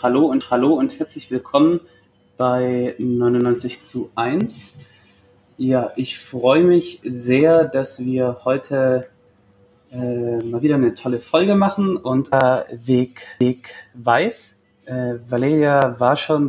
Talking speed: 115 wpm